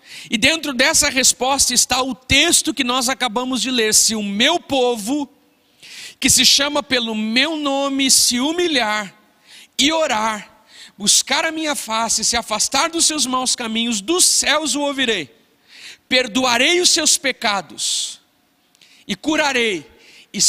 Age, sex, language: 50-69, male, Portuguese